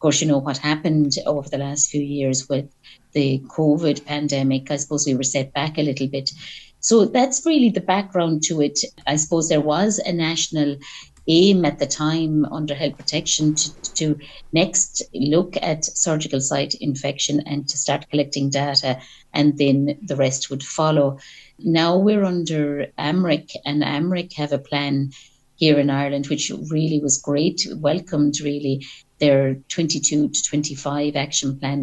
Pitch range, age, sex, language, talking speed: 140-155 Hz, 60-79, female, English, 165 wpm